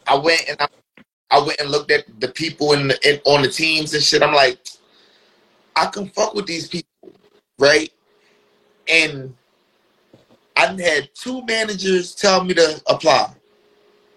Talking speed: 155 wpm